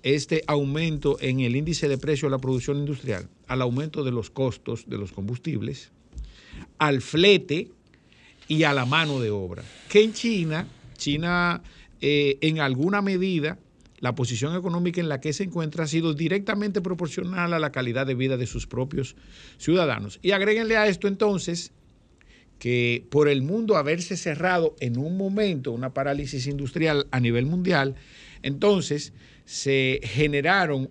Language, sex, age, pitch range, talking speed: Spanish, male, 50-69, 130-170 Hz, 155 wpm